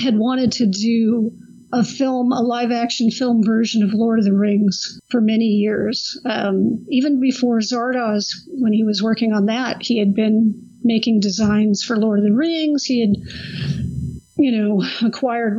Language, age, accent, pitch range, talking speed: English, 50-69, American, 210-245 Hz, 165 wpm